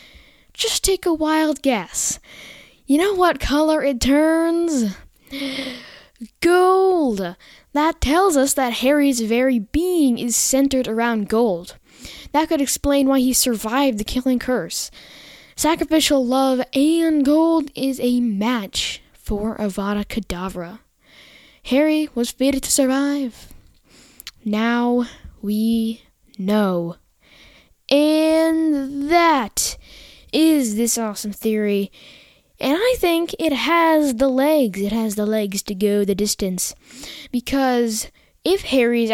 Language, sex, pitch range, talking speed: English, female, 215-300 Hz, 115 wpm